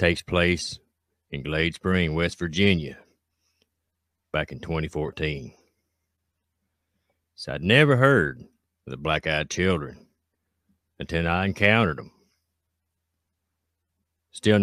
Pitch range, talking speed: 85-95 Hz, 95 wpm